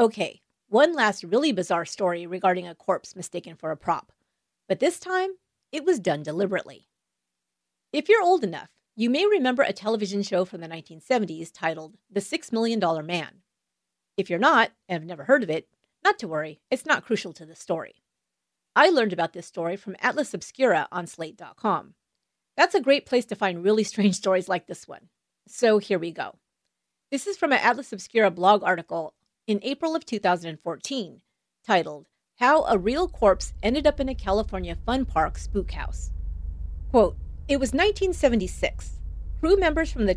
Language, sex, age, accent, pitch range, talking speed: English, female, 40-59, American, 165-255 Hz, 175 wpm